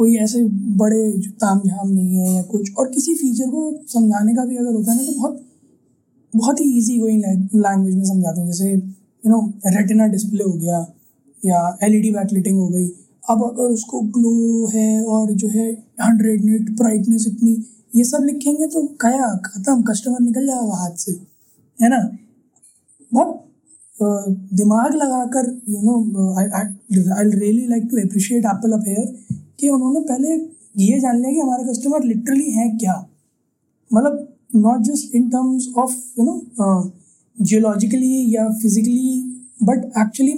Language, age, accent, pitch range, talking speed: Hindi, 20-39, native, 205-255 Hz, 160 wpm